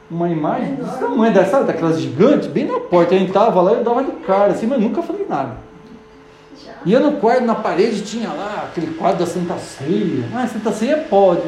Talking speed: 210 wpm